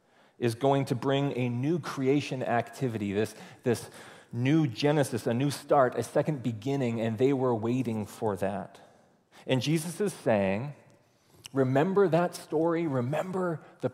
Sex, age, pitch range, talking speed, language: male, 30-49, 110-140 Hz, 140 wpm, English